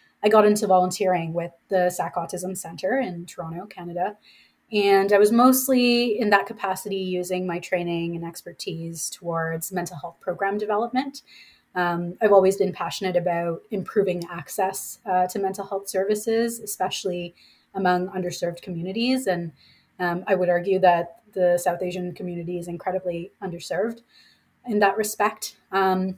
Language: English